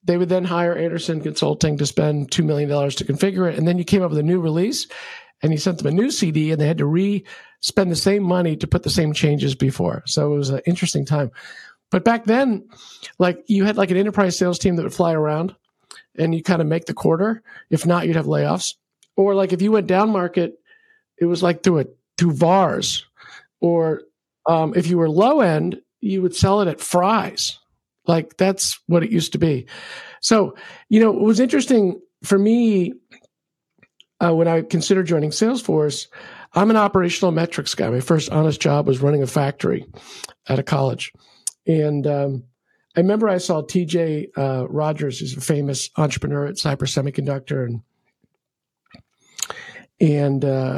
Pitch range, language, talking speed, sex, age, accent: 150-195 Hz, English, 190 wpm, male, 50-69, American